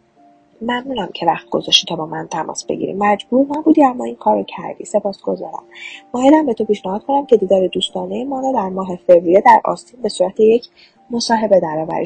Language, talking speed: Persian, 175 wpm